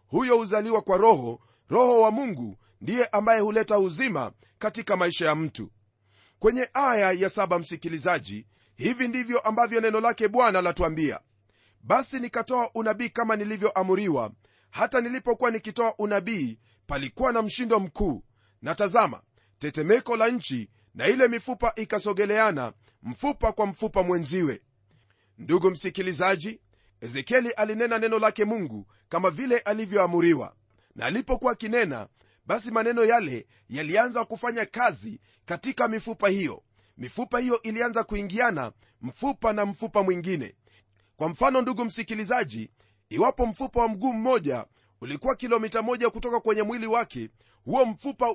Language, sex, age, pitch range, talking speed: Swahili, male, 40-59, 155-235 Hz, 125 wpm